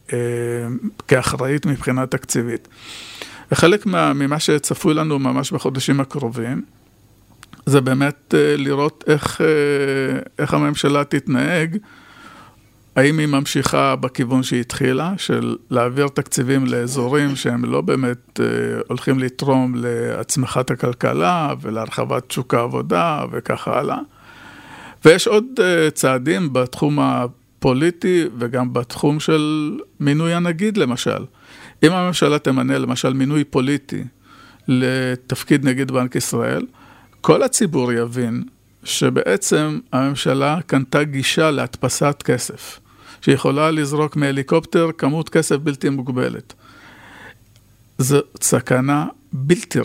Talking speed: 100 wpm